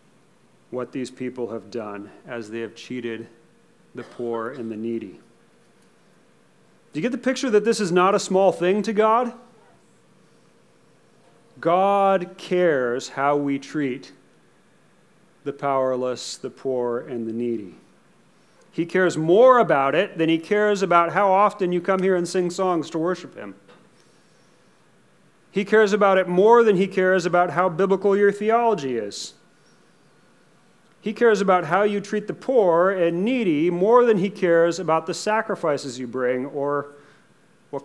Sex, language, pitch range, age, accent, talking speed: male, English, 140-195 Hz, 40-59, American, 150 wpm